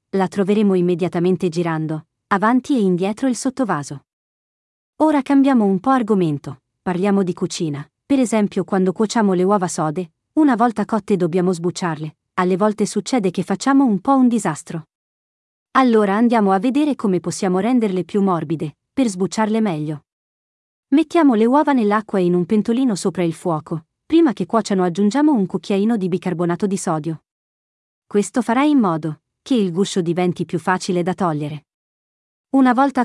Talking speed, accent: 155 wpm, Italian